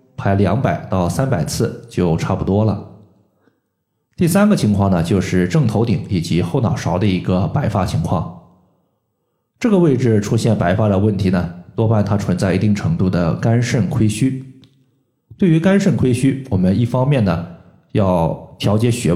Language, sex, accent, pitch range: Chinese, male, native, 100-140 Hz